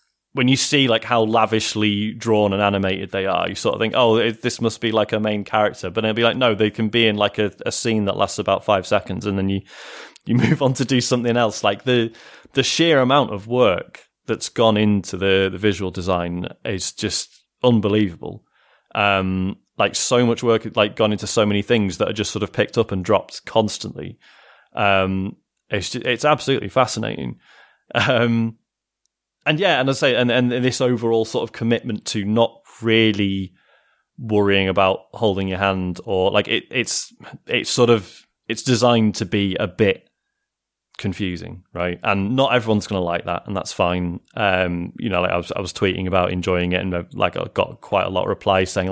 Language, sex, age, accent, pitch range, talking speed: English, male, 30-49, British, 95-120 Hz, 200 wpm